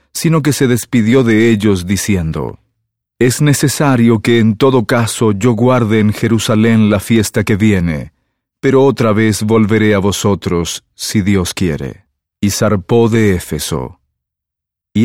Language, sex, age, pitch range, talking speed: English, male, 40-59, 105-125 Hz, 140 wpm